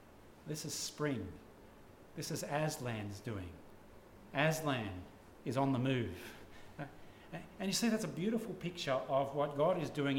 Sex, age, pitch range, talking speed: male, 40-59, 125-190 Hz, 140 wpm